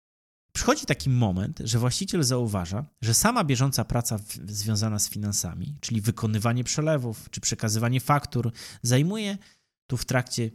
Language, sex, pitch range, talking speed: Polish, male, 105-145 Hz, 130 wpm